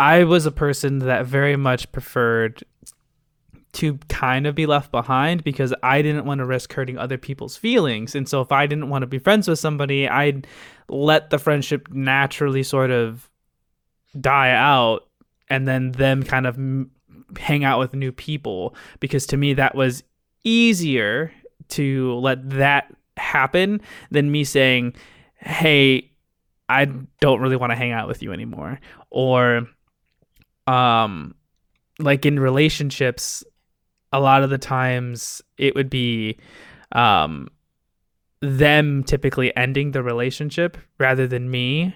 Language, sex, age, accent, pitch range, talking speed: English, male, 20-39, American, 125-145 Hz, 145 wpm